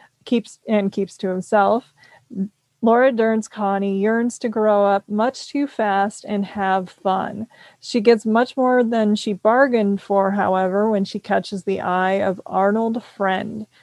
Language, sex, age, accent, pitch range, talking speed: English, female, 30-49, American, 195-225 Hz, 150 wpm